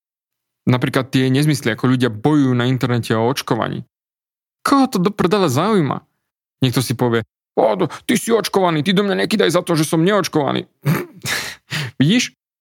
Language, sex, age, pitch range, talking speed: Slovak, male, 20-39, 120-150 Hz, 150 wpm